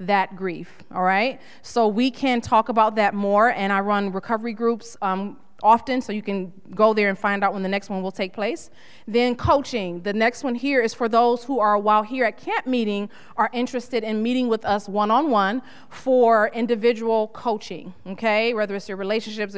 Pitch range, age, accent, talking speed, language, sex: 195-235 Hz, 30-49, American, 195 wpm, English, female